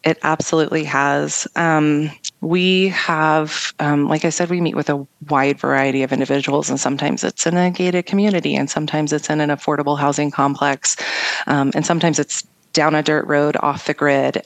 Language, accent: English, American